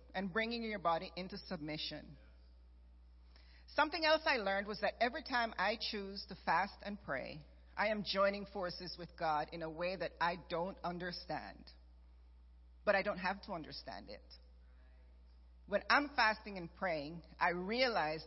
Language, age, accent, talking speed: English, 40-59, American, 155 wpm